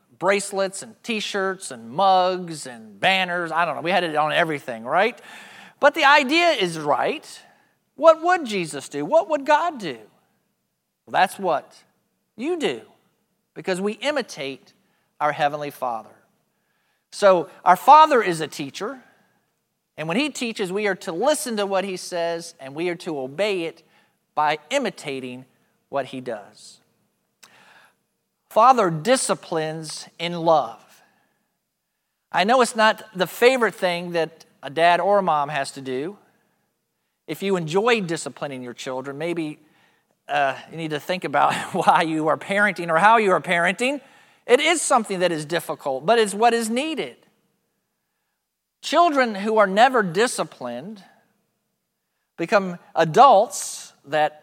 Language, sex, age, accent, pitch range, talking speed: English, male, 40-59, American, 160-230 Hz, 140 wpm